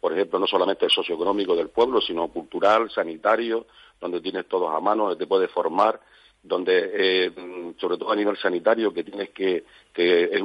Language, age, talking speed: Spanish, 50-69, 185 wpm